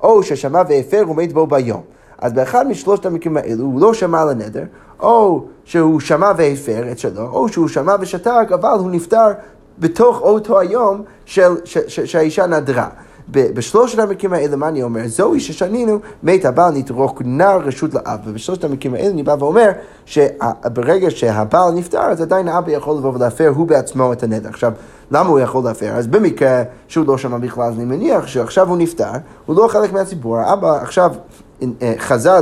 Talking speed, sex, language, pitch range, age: 165 wpm, male, Hebrew, 135-195 Hz, 30-49